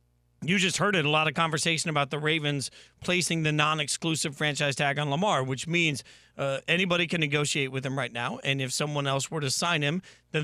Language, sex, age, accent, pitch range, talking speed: English, male, 40-59, American, 140-165 Hz, 215 wpm